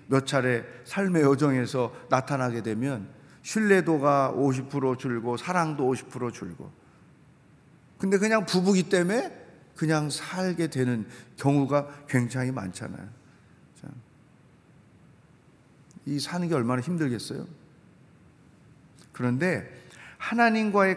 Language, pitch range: Korean, 140-180 Hz